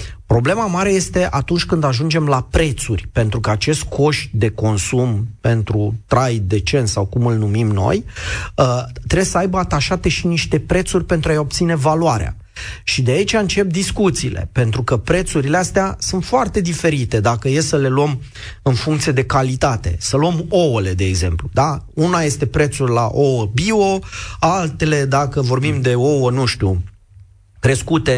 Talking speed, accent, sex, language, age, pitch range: 160 wpm, native, male, Romanian, 30-49, 115-160 Hz